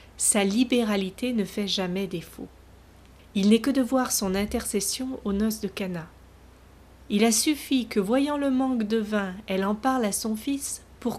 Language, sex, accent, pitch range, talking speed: French, female, French, 190-250 Hz, 175 wpm